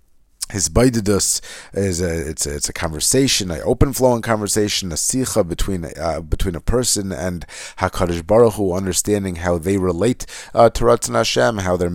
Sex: male